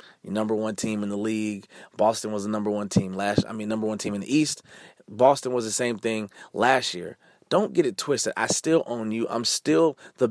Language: English